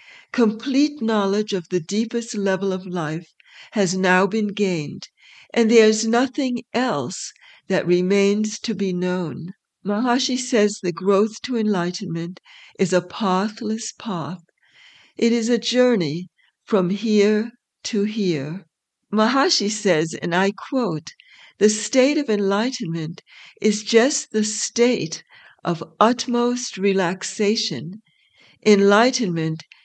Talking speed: 115 wpm